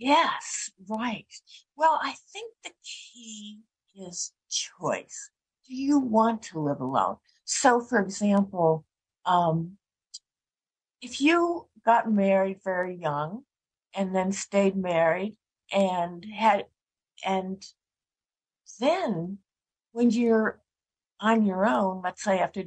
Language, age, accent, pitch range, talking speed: English, 60-79, American, 170-230 Hz, 105 wpm